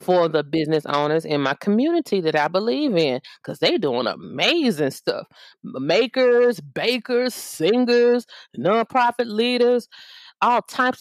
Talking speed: 120 wpm